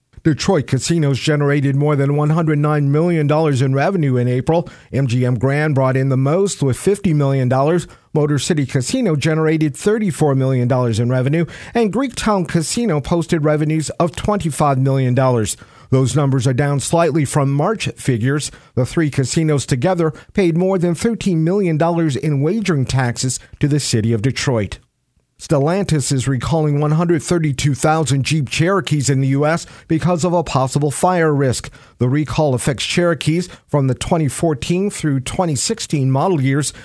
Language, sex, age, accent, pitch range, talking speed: English, male, 50-69, American, 135-165 Hz, 140 wpm